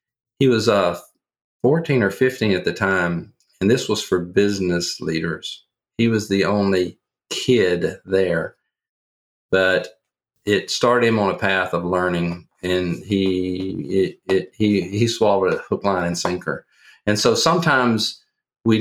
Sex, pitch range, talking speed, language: male, 90-110 Hz, 145 wpm, English